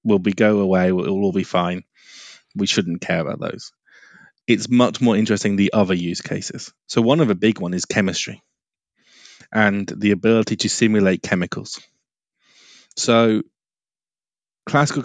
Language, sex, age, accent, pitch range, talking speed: English, male, 20-39, British, 100-125 Hz, 150 wpm